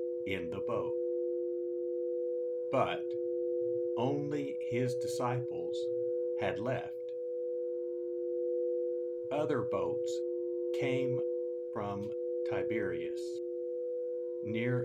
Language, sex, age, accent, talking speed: English, male, 50-69, American, 60 wpm